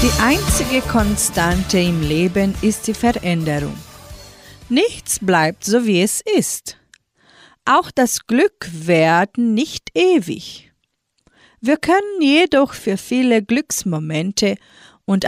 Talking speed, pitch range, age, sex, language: 105 wpm, 190-255 Hz, 40-59, female, German